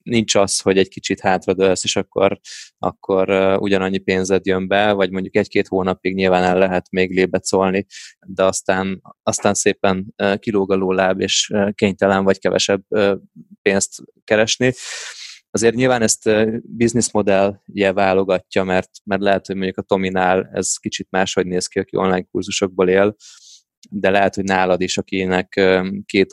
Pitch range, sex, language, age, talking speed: 95-100 Hz, male, Hungarian, 20-39, 145 wpm